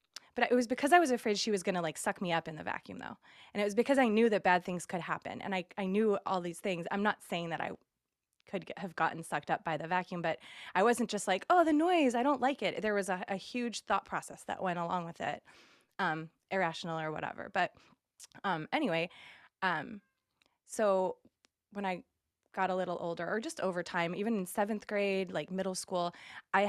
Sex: female